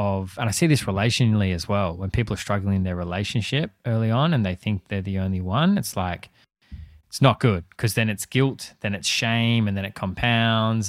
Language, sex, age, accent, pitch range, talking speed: English, male, 20-39, Australian, 95-120 Hz, 215 wpm